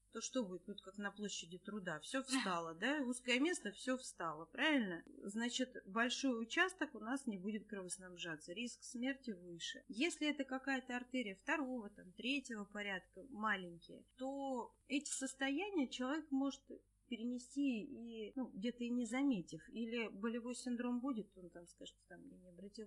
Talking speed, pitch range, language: 155 wpm, 185-255 Hz, Russian